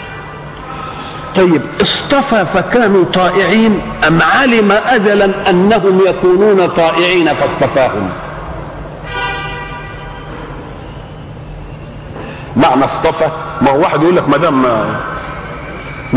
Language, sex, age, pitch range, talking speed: Arabic, male, 50-69, 135-195 Hz, 80 wpm